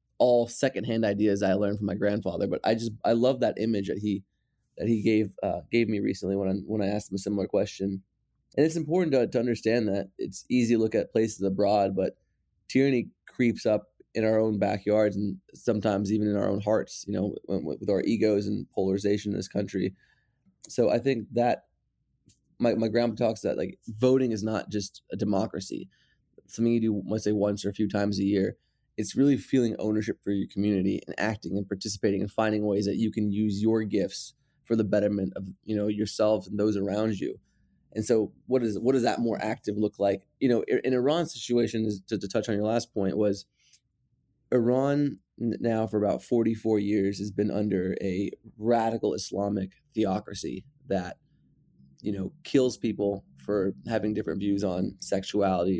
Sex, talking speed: male, 195 wpm